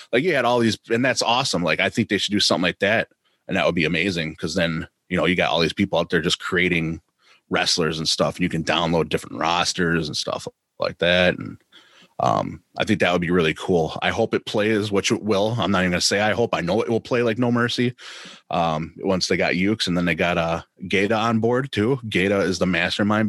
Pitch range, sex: 85-110 Hz, male